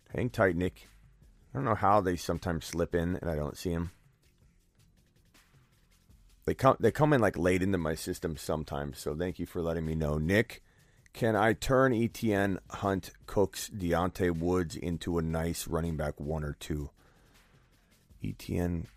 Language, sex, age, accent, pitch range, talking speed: English, male, 30-49, American, 80-105 Hz, 165 wpm